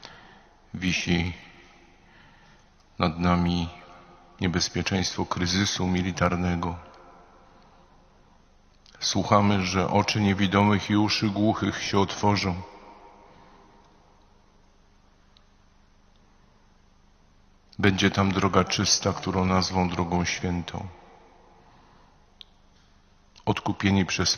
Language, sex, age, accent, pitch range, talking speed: Polish, male, 50-69, native, 90-105 Hz, 60 wpm